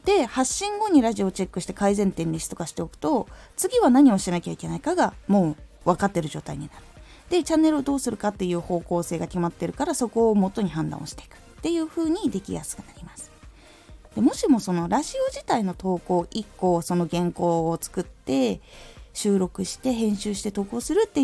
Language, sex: Japanese, female